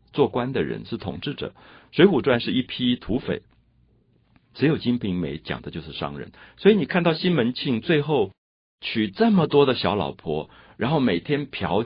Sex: male